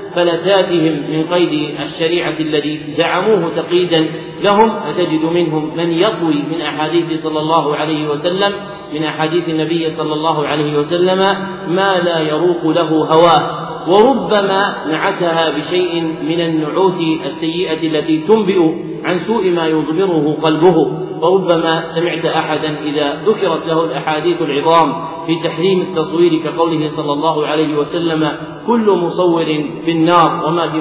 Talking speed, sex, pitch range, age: 125 wpm, male, 155-175 Hz, 40-59